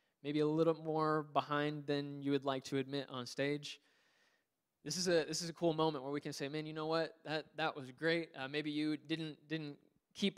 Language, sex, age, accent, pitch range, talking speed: English, male, 20-39, American, 135-155 Hz, 225 wpm